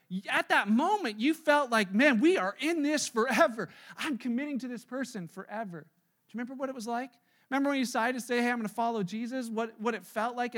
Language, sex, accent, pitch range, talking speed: English, male, American, 200-255 Hz, 240 wpm